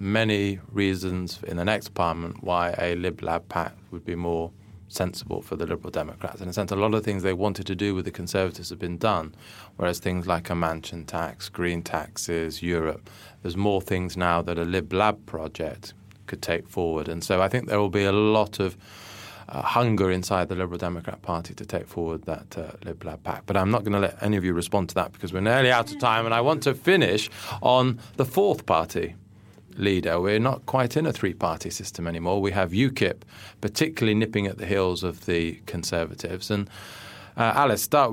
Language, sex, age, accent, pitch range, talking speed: English, male, 20-39, British, 90-115 Hz, 210 wpm